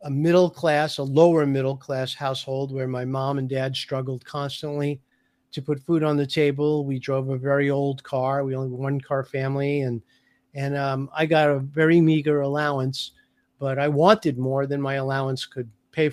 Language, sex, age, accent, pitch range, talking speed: English, male, 50-69, American, 135-150 Hz, 190 wpm